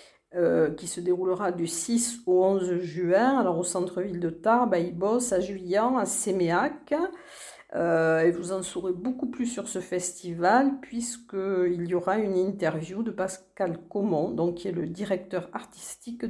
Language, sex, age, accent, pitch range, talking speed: French, female, 50-69, French, 180-225 Hz, 160 wpm